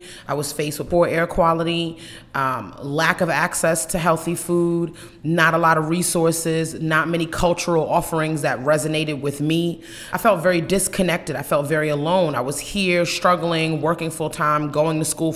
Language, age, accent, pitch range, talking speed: English, 30-49, American, 150-180 Hz, 170 wpm